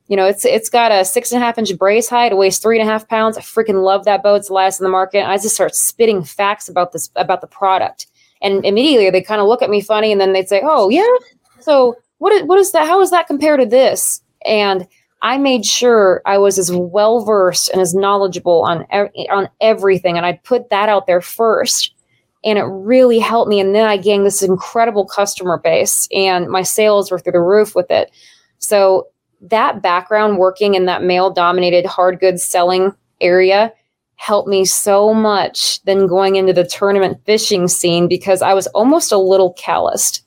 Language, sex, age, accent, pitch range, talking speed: English, female, 20-39, American, 180-215 Hz, 205 wpm